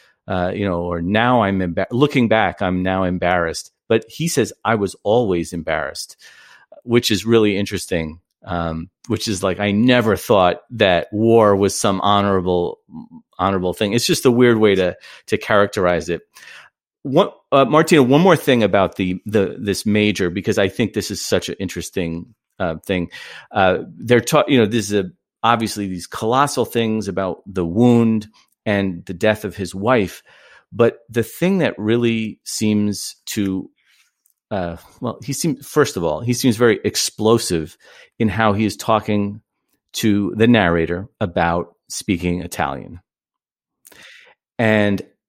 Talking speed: 150 wpm